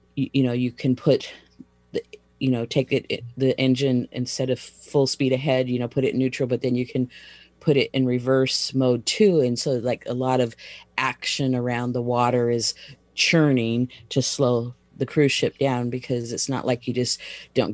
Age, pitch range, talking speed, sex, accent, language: 40-59, 115-135 Hz, 185 wpm, female, American, English